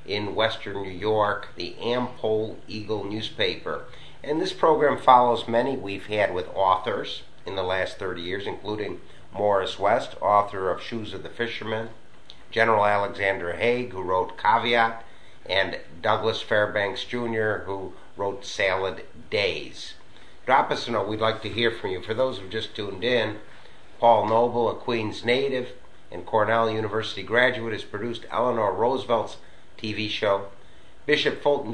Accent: American